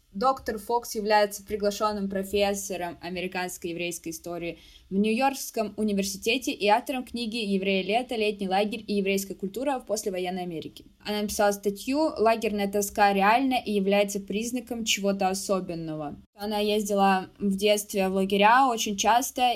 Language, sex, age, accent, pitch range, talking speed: Russian, female, 20-39, native, 200-225 Hz, 140 wpm